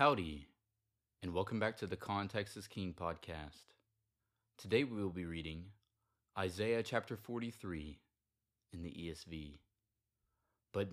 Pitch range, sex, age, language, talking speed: 90-120 Hz, male, 30-49, English, 120 wpm